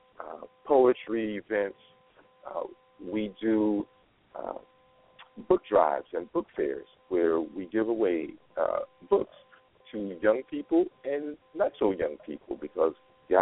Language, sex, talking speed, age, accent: English, male, 125 wpm, 50-69, American